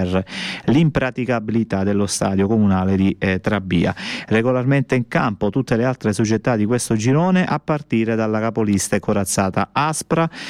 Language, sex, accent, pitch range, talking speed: Italian, male, native, 100-125 Hz, 145 wpm